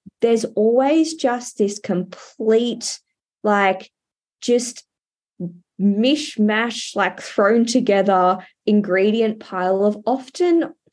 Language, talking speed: English, 80 wpm